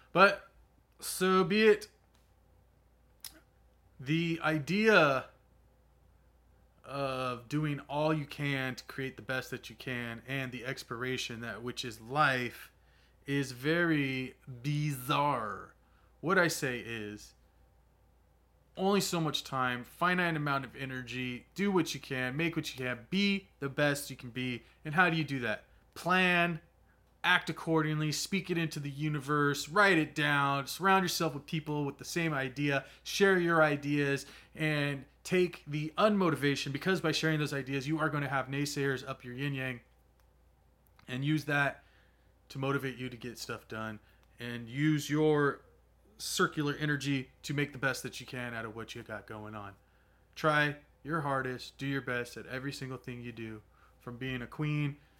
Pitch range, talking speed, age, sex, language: 120-155 Hz, 160 wpm, 20-39, male, English